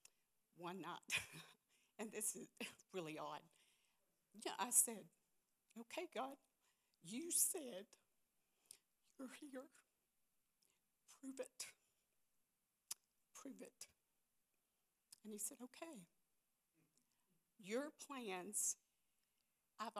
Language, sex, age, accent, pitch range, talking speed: English, female, 60-79, American, 200-270 Hz, 80 wpm